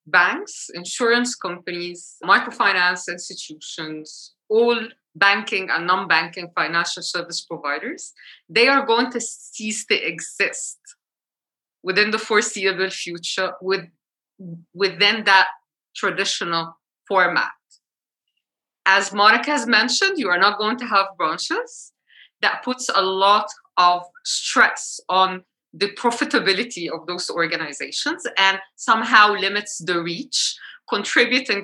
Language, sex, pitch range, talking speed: English, female, 175-235 Hz, 110 wpm